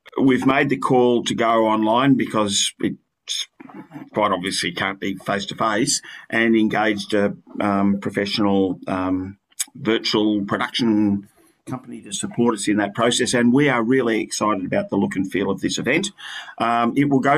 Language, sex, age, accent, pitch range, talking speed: English, male, 50-69, Australian, 100-125 Hz, 165 wpm